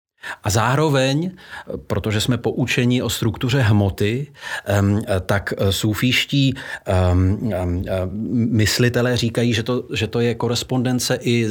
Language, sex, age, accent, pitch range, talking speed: Czech, male, 40-59, native, 105-130 Hz, 100 wpm